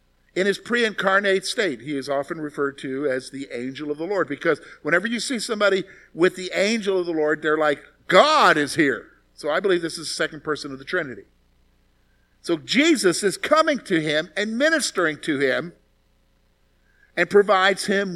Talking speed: 180 wpm